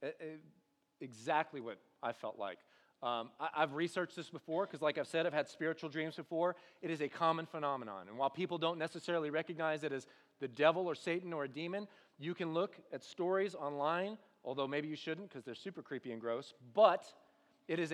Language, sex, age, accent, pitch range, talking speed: English, male, 30-49, American, 145-190 Hz, 205 wpm